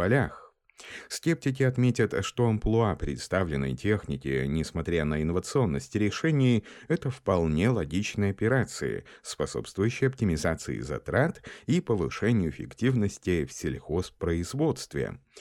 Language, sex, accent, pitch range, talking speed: Russian, male, native, 80-115 Hz, 85 wpm